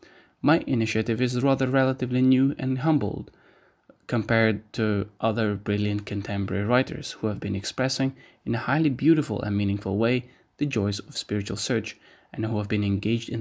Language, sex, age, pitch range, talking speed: English, male, 20-39, 105-140 Hz, 160 wpm